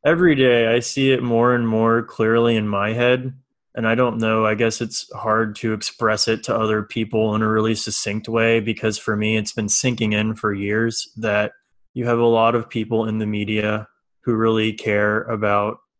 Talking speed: 205 wpm